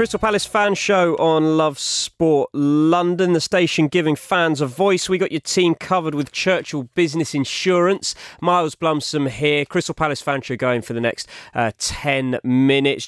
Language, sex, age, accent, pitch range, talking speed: English, male, 30-49, British, 130-165 Hz, 170 wpm